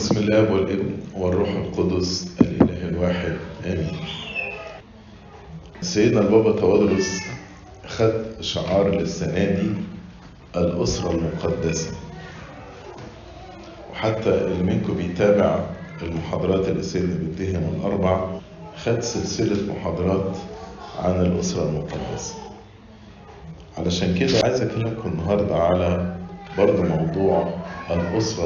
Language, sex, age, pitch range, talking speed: English, male, 40-59, 90-105 Hz, 85 wpm